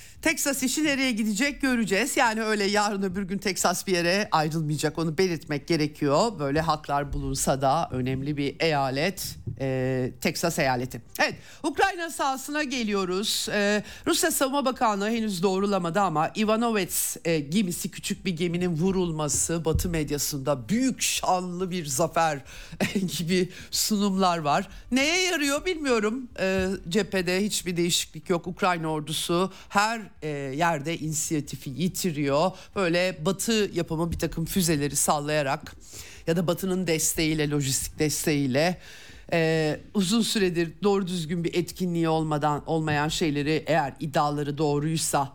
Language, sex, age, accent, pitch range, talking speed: Turkish, male, 50-69, native, 150-200 Hz, 125 wpm